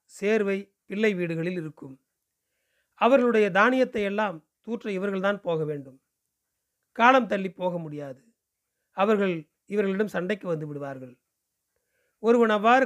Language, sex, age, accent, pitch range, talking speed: Tamil, male, 40-59, native, 165-225 Hz, 100 wpm